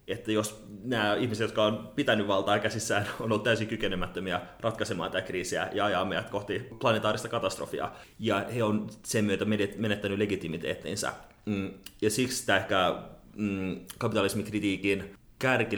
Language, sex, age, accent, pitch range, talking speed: Finnish, male, 30-49, native, 100-115 Hz, 130 wpm